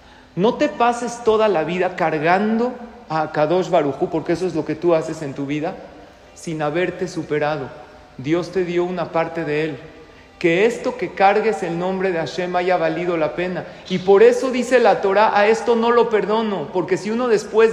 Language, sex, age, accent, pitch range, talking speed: English, male, 40-59, Mexican, 165-210 Hz, 195 wpm